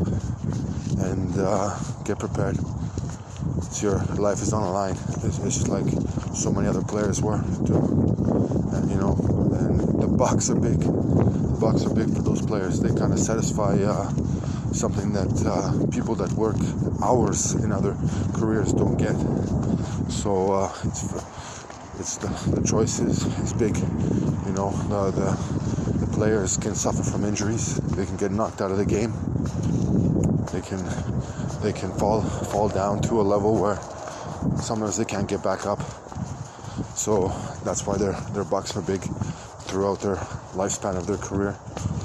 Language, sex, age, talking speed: Hebrew, male, 20-39, 160 wpm